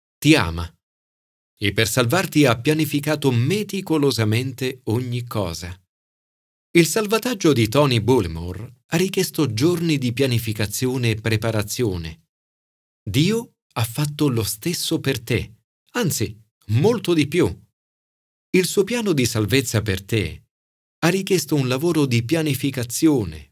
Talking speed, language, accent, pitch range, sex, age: 115 wpm, Italian, native, 105-155 Hz, male, 40-59